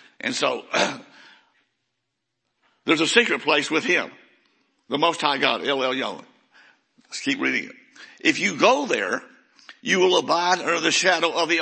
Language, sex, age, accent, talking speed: English, male, 60-79, American, 160 wpm